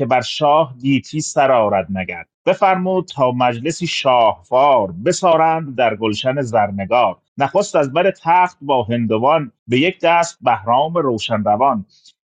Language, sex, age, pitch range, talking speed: Persian, male, 30-49, 135-200 Hz, 125 wpm